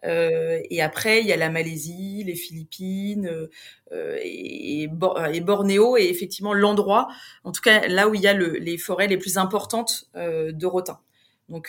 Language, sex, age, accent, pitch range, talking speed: French, female, 30-49, French, 170-220 Hz, 170 wpm